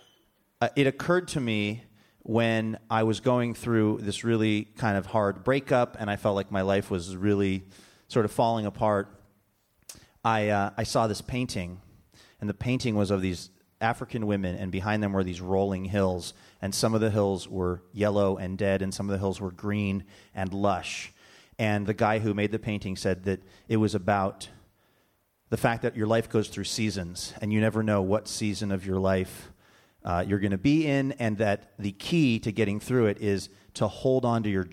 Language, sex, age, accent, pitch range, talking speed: English, male, 30-49, American, 95-110 Hz, 200 wpm